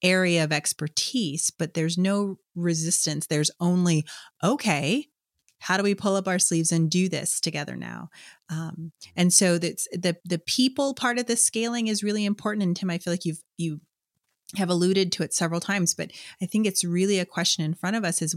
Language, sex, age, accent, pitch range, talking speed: English, female, 30-49, American, 165-200 Hz, 200 wpm